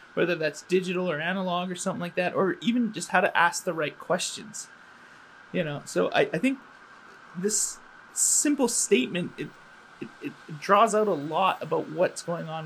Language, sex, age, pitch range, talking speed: English, male, 20-39, 165-205 Hz, 180 wpm